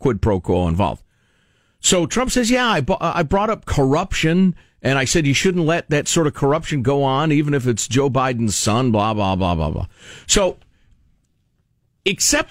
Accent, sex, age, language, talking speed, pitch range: American, male, 50-69, English, 185 wpm, 100-170 Hz